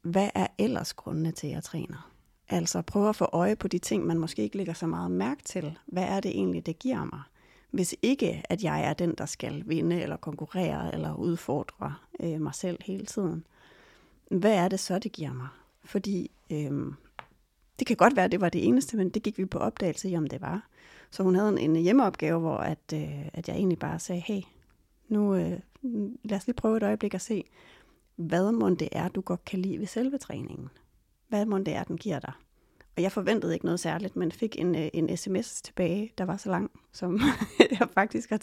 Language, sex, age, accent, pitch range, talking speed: Danish, female, 30-49, native, 165-200 Hz, 210 wpm